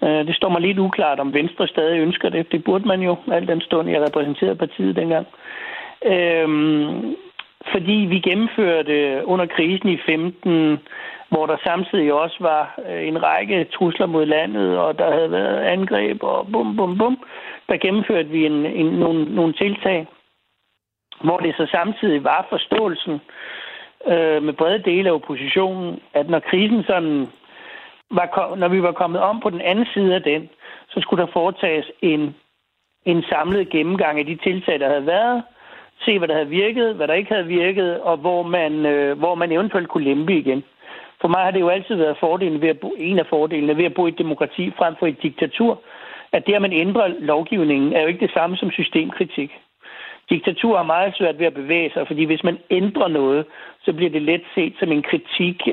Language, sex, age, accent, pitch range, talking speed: Danish, male, 60-79, native, 155-190 Hz, 190 wpm